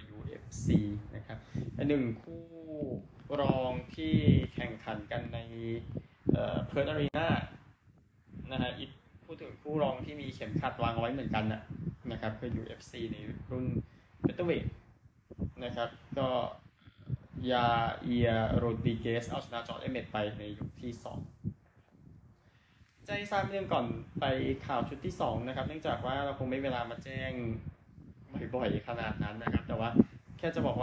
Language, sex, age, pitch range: Thai, male, 20-39, 115-140 Hz